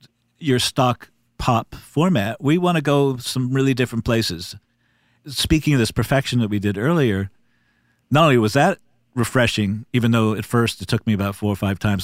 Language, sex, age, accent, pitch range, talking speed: English, male, 50-69, American, 100-125 Hz, 185 wpm